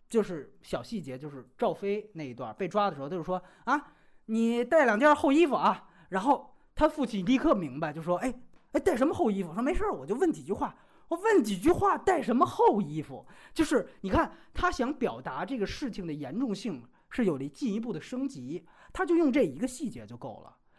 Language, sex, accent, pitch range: Chinese, male, native, 175-260 Hz